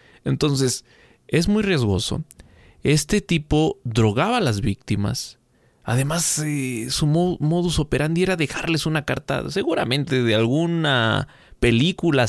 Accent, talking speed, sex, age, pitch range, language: Mexican, 110 wpm, male, 30-49, 115-155 Hz, Spanish